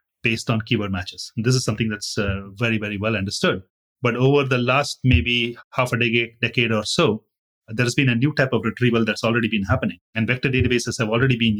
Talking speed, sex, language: 220 wpm, male, English